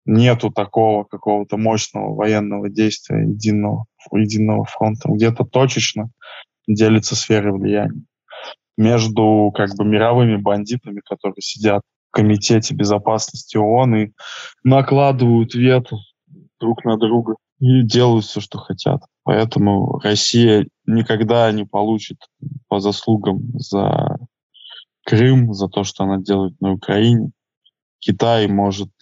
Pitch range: 100-115 Hz